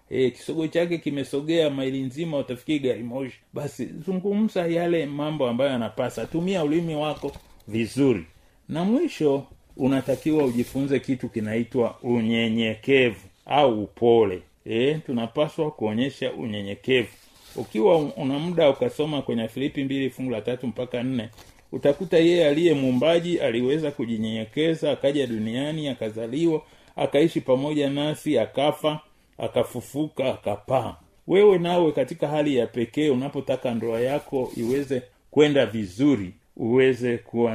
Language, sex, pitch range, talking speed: Swahili, male, 115-150 Hz, 110 wpm